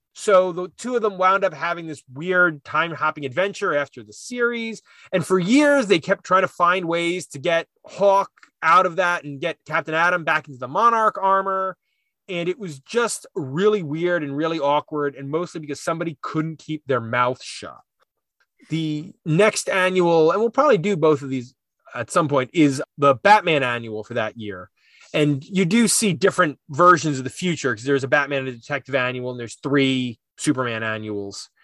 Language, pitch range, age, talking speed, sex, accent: English, 140-190 Hz, 30-49, 190 wpm, male, American